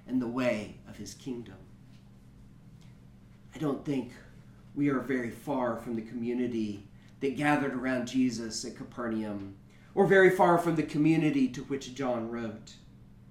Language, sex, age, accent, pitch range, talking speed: English, male, 40-59, American, 125-170 Hz, 145 wpm